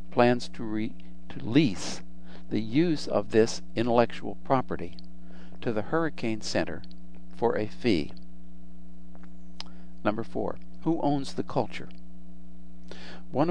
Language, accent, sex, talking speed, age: English, American, male, 105 wpm, 60-79